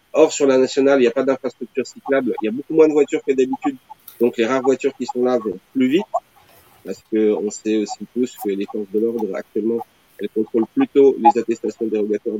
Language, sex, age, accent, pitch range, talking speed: French, male, 30-49, French, 110-145 Hz, 225 wpm